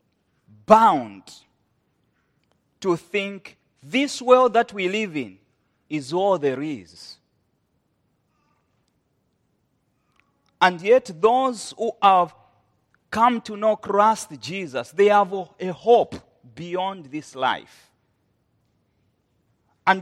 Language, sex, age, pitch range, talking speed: English, male, 40-59, 145-215 Hz, 95 wpm